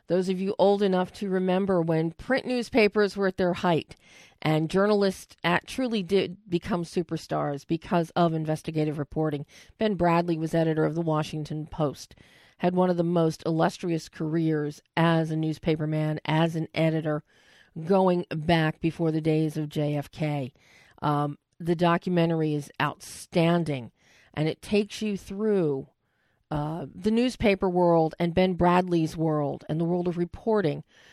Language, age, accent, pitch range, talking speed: English, 40-59, American, 155-190 Hz, 150 wpm